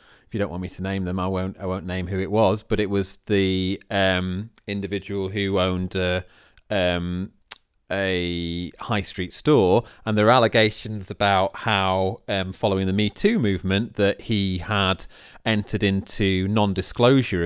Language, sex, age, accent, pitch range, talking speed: English, male, 30-49, British, 90-110 Hz, 165 wpm